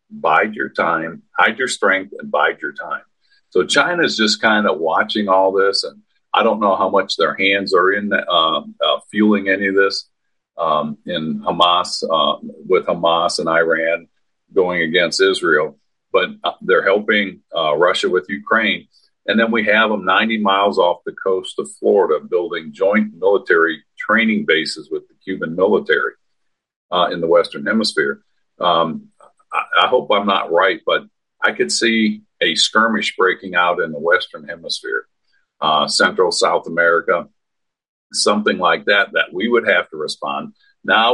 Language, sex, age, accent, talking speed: English, male, 50-69, American, 160 wpm